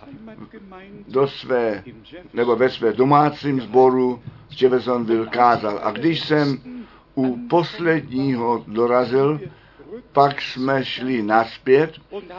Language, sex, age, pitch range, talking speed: Czech, male, 60-79, 125-155 Hz, 95 wpm